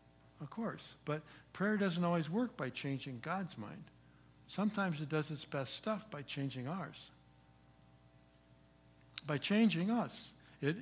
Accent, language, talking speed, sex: American, English, 135 wpm, male